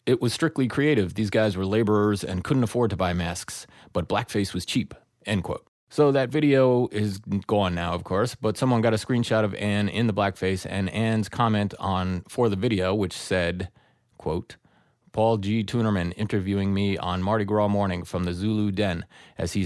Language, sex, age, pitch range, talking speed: English, male, 30-49, 90-115 Hz, 190 wpm